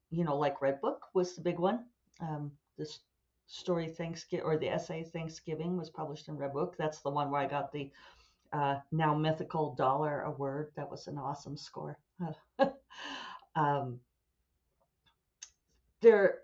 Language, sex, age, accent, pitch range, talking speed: English, female, 50-69, American, 145-185 Hz, 150 wpm